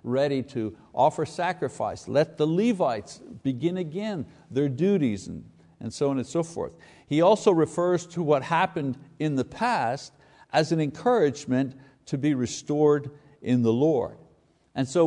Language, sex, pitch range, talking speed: English, male, 120-165 Hz, 150 wpm